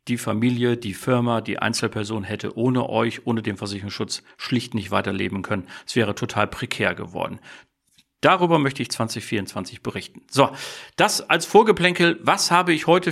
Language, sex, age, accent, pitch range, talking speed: German, male, 40-59, German, 115-160 Hz, 155 wpm